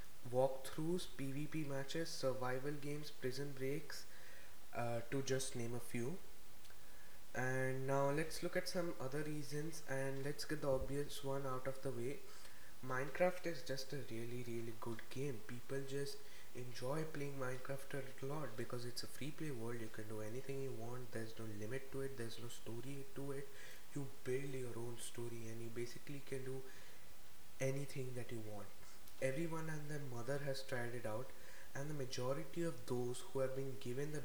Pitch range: 125-140 Hz